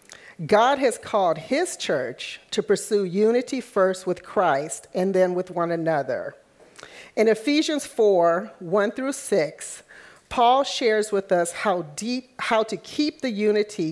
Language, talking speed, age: English, 140 wpm, 50-69